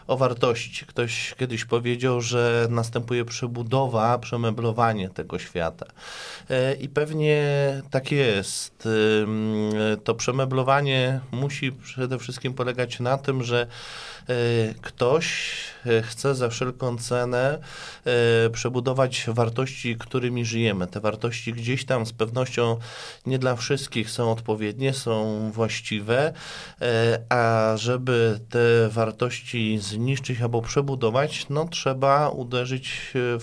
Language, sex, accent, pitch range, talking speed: Polish, male, native, 110-130 Hz, 105 wpm